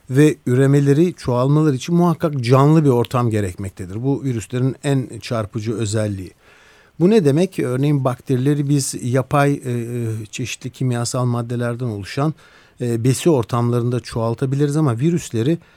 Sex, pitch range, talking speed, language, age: male, 120-155 Hz, 120 wpm, Turkish, 60-79